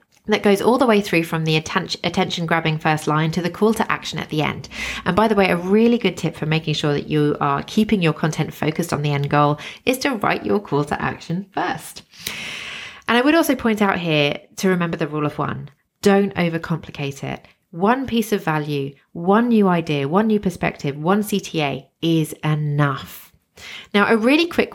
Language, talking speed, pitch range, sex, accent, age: English, 200 wpm, 155-205 Hz, female, British, 30-49